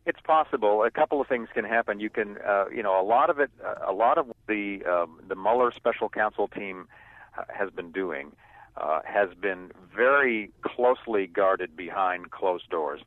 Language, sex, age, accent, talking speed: English, male, 50-69, American, 185 wpm